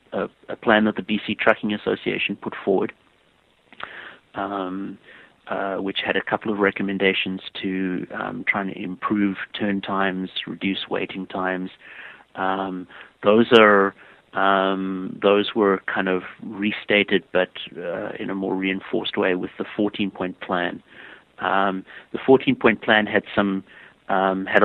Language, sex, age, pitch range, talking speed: English, male, 30-49, 95-100 Hz, 135 wpm